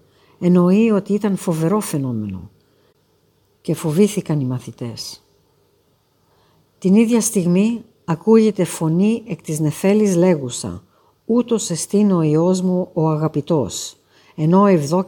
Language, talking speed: Greek, 105 wpm